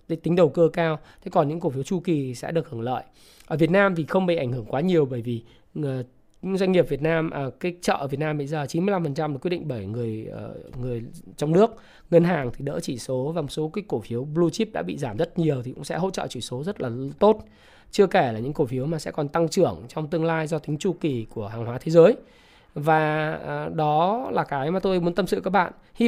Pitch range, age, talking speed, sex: 135-175 Hz, 20-39, 270 wpm, male